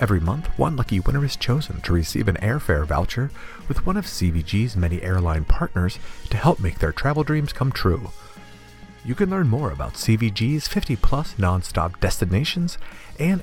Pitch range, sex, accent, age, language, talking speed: 95-145 Hz, male, American, 50-69, English, 165 wpm